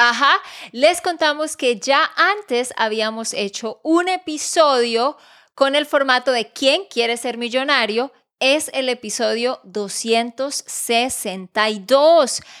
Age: 20-39